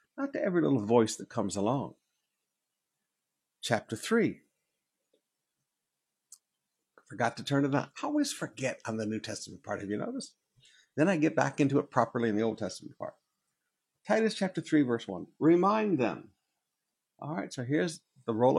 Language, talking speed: English, 160 wpm